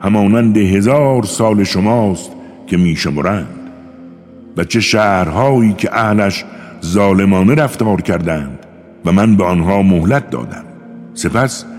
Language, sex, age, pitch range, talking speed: Persian, male, 60-79, 90-120 Hz, 105 wpm